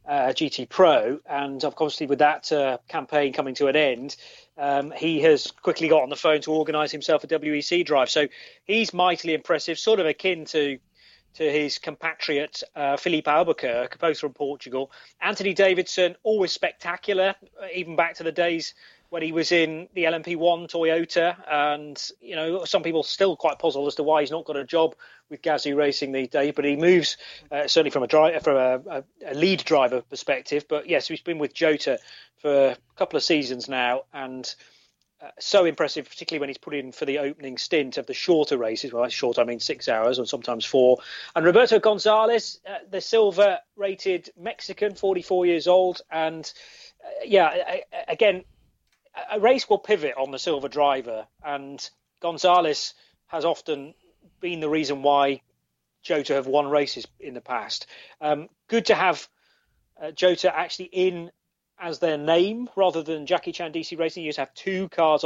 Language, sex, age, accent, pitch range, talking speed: English, male, 30-49, British, 145-180 Hz, 180 wpm